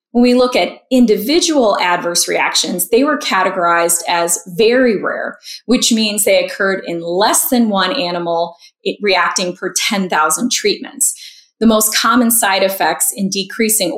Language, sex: English, female